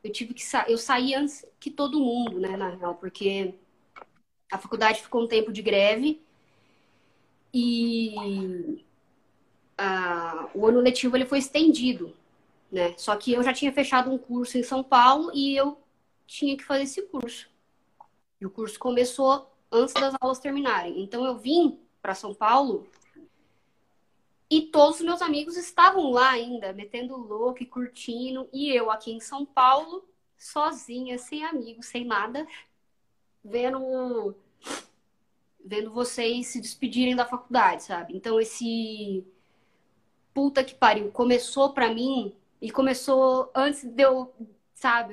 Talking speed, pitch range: 140 wpm, 225-270 Hz